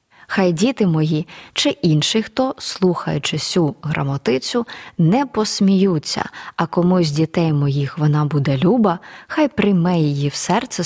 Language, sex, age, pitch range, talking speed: Ukrainian, female, 20-39, 150-205 Hz, 125 wpm